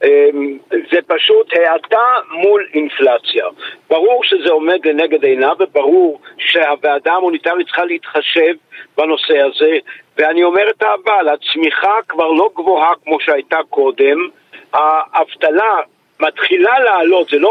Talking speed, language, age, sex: 115 wpm, Hebrew, 50-69, male